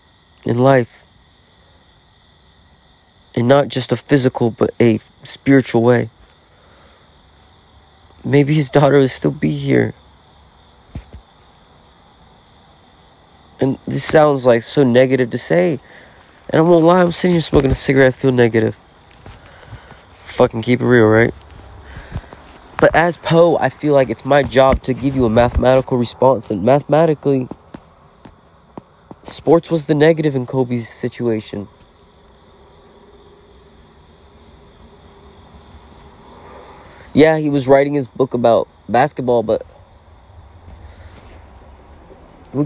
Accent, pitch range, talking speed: American, 85-135 Hz, 110 wpm